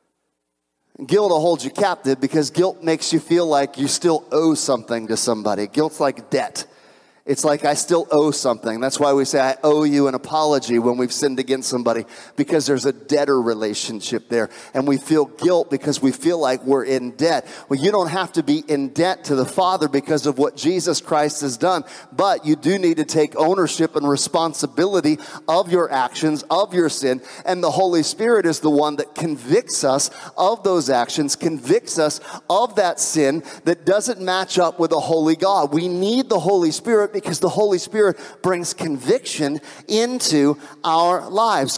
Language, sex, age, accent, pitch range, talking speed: English, male, 40-59, American, 145-185 Hz, 185 wpm